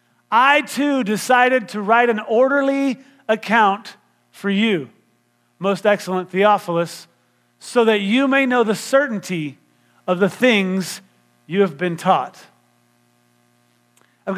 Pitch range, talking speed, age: 185-245 Hz, 115 wpm, 40-59